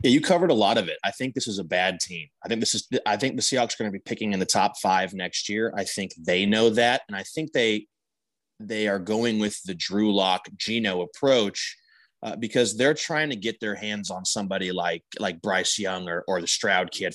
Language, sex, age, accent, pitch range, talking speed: English, male, 20-39, American, 100-115 Hz, 245 wpm